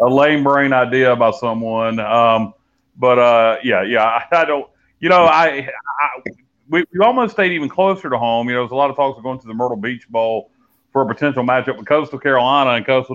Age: 30-49